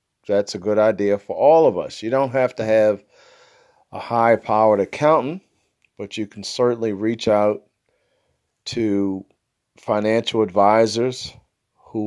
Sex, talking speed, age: male, 130 wpm, 50-69